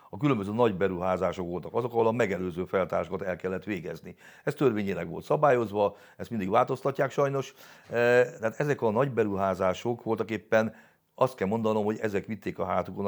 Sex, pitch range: male, 95-120 Hz